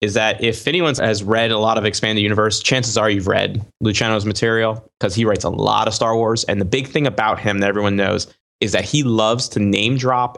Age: 20-39